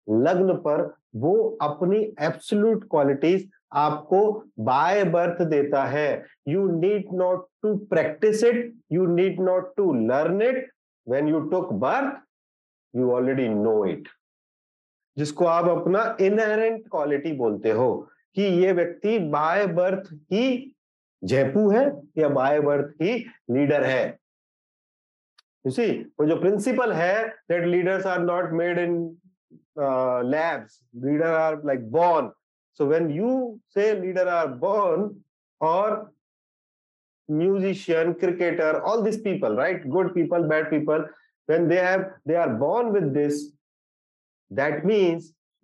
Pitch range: 150-200 Hz